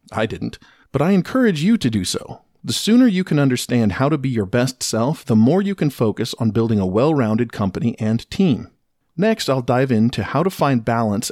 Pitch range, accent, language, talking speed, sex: 110-155 Hz, American, English, 210 wpm, male